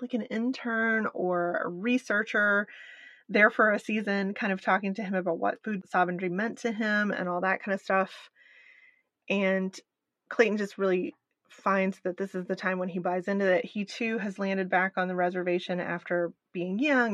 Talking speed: 190 wpm